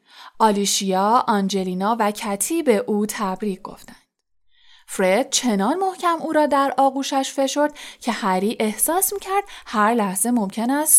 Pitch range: 200-285 Hz